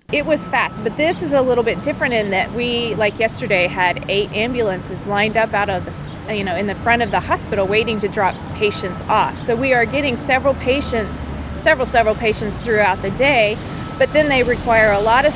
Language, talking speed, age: Finnish, 215 wpm, 30-49